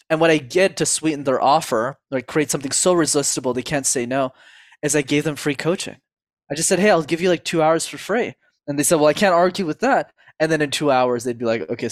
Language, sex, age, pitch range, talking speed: English, male, 20-39, 135-180 Hz, 265 wpm